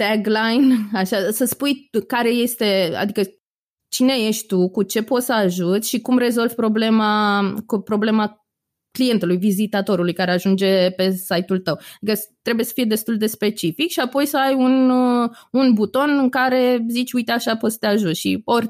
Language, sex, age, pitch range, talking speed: Romanian, female, 20-39, 185-230 Hz, 165 wpm